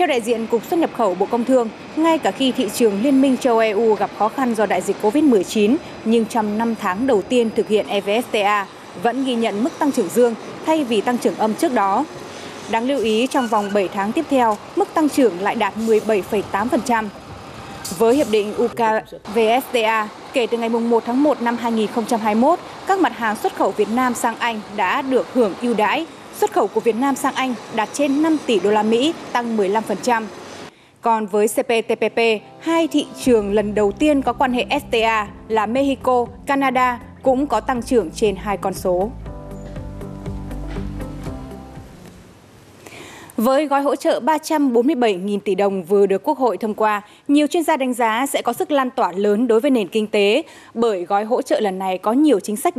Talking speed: 190 wpm